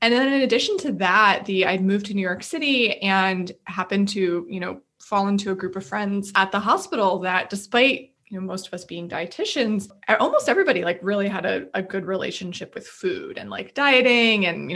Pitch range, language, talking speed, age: 190-225 Hz, English, 210 wpm, 20-39